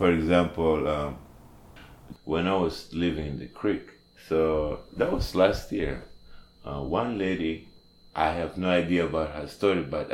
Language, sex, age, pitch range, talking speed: English, male, 30-49, 65-95 Hz, 155 wpm